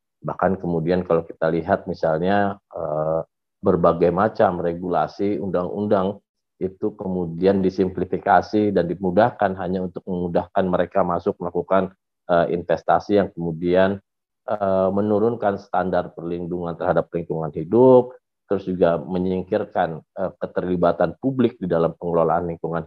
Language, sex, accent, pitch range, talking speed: Indonesian, male, native, 85-100 Hz, 100 wpm